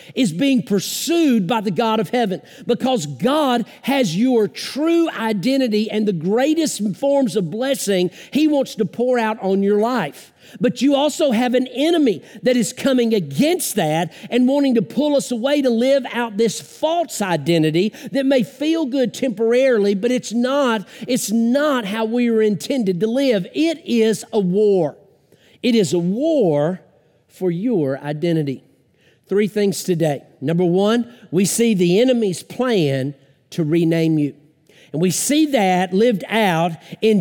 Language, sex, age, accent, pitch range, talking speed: English, male, 50-69, American, 180-250 Hz, 160 wpm